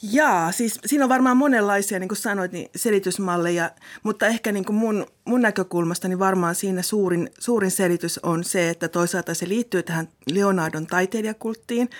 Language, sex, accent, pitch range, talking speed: Finnish, female, native, 175-210 Hz, 165 wpm